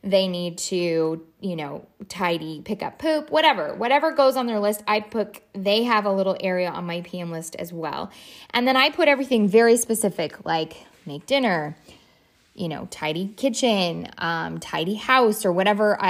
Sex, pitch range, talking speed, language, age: female, 170-220 Hz, 175 wpm, English, 20-39